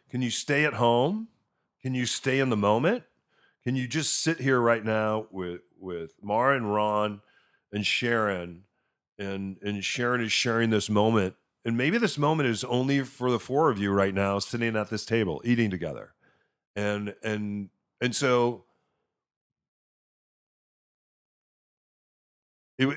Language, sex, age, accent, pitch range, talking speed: English, male, 40-59, American, 100-130 Hz, 150 wpm